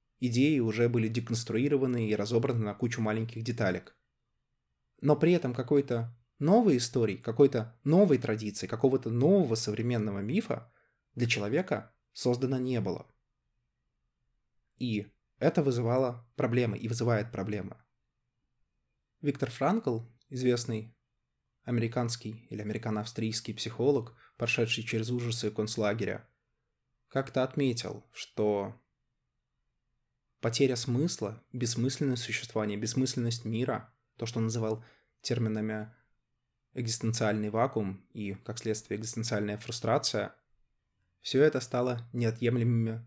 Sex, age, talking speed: male, 20-39, 100 wpm